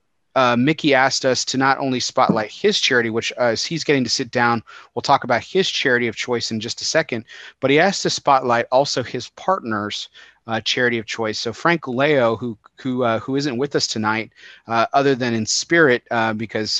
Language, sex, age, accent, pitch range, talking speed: English, male, 30-49, American, 115-135 Hz, 210 wpm